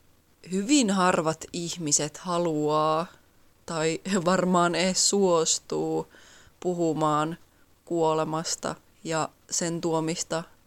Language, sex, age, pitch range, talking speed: Finnish, female, 20-39, 160-185 Hz, 75 wpm